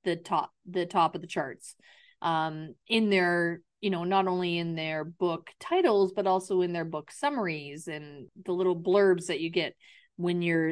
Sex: female